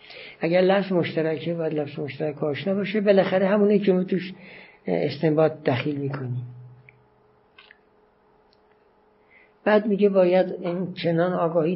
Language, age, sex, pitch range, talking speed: Persian, 60-79, male, 150-185 Hz, 105 wpm